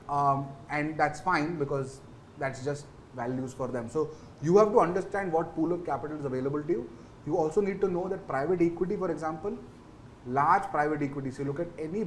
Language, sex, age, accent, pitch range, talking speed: English, male, 30-49, Indian, 130-175 Hz, 200 wpm